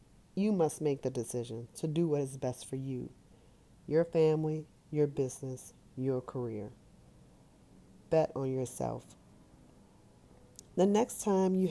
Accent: American